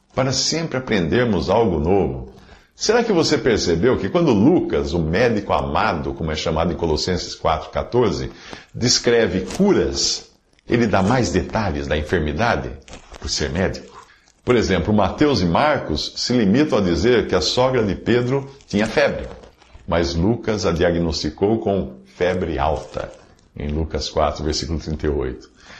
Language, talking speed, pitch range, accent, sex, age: Portuguese, 140 wpm, 85-120 Hz, Brazilian, male, 60-79